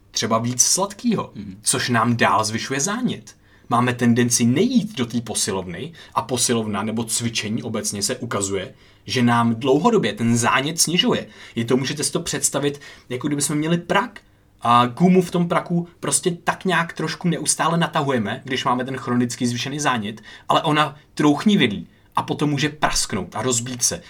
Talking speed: 160 wpm